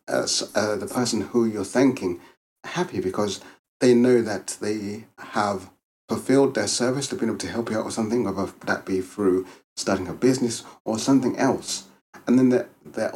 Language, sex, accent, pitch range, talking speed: English, male, British, 95-120 Hz, 180 wpm